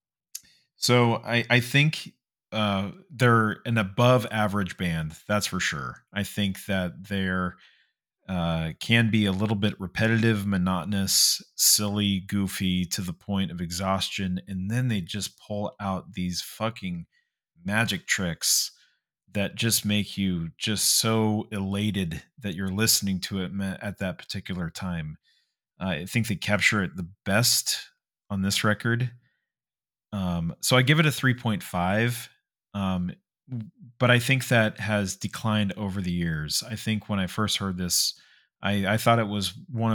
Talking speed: 150 wpm